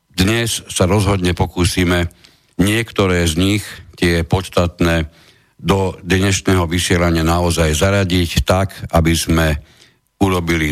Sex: male